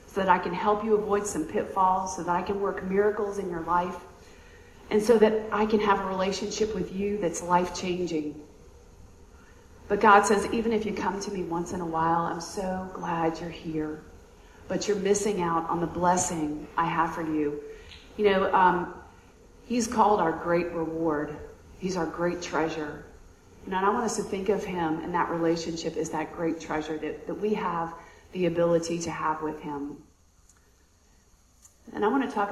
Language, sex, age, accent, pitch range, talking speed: English, female, 40-59, American, 155-205 Hz, 185 wpm